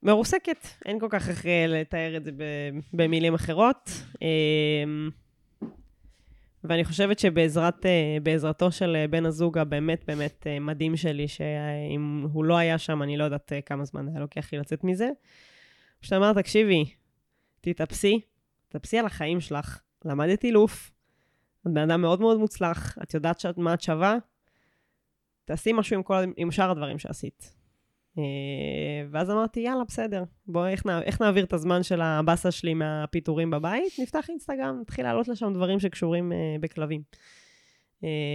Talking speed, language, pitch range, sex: 145 wpm, Hebrew, 150-185 Hz, female